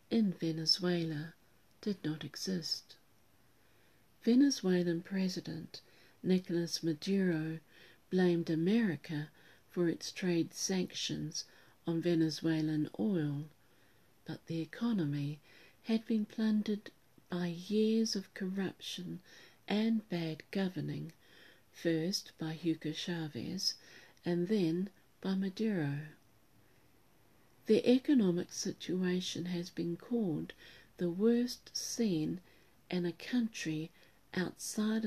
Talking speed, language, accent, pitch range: 90 wpm, English, British, 160-190 Hz